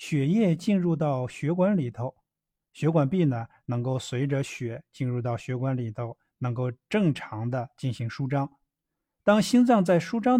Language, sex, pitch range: Chinese, male, 130-175 Hz